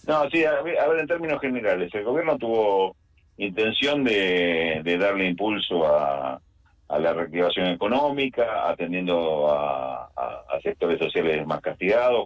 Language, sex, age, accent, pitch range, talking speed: Spanish, male, 40-59, Argentinian, 75-110 Hz, 135 wpm